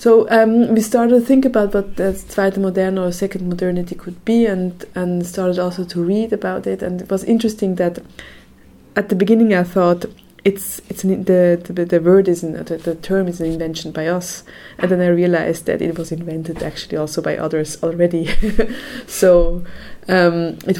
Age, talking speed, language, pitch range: 20-39, 195 wpm, English, 165-195 Hz